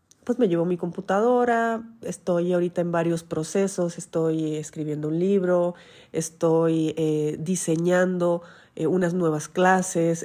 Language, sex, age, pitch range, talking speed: Spanish, female, 30-49, 165-200 Hz, 125 wpm